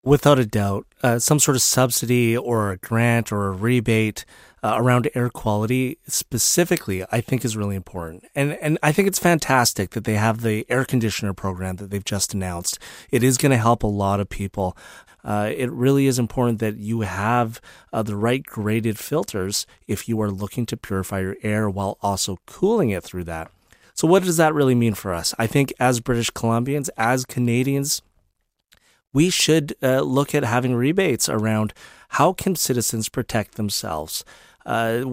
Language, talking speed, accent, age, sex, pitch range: English, 180 wpm, American, 30-49, male, 105-130 Hz